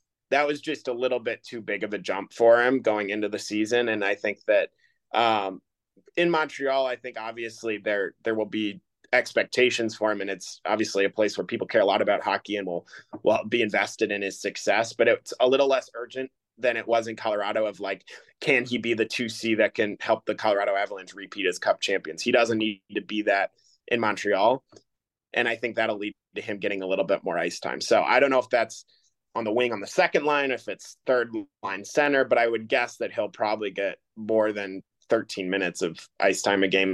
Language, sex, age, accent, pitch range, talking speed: English, male, 20-39, American, 100-125 Hz, 225 wpm